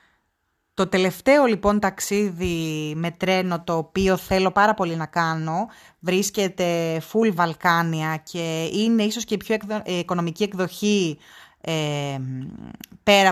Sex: female